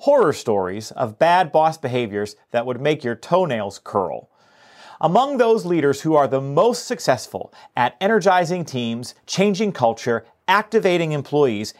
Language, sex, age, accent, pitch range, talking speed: English, male, 40-59, American, 140-215 Hz, 135 wpm